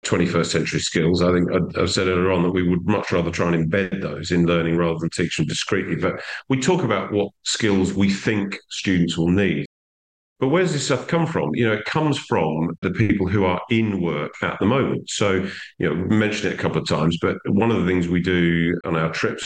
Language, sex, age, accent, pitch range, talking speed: English, male, 40-59, British, 85-110 Hz, 235 wpm